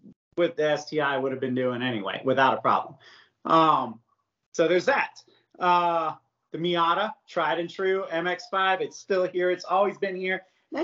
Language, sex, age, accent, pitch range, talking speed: English, male, 30-49, American, 155-205 Hz, 165 wpm